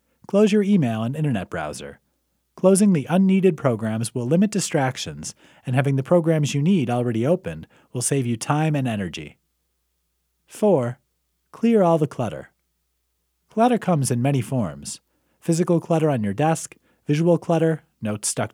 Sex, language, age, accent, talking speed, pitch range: male, English, 30-49, American, 150 wpm, 110-170 Hz